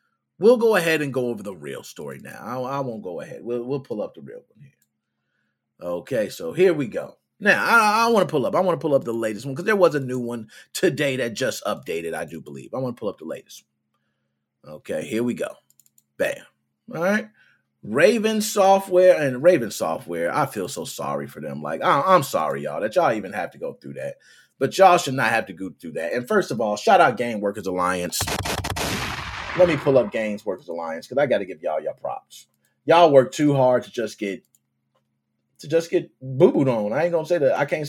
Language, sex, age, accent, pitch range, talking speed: English, male, 30-49, American, 110-180 Hz, 235 wpm